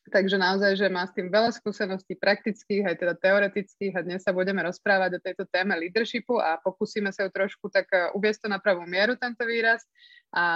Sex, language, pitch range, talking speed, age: female, Slovak, 180-225 Hz, 200 wpm, 20-39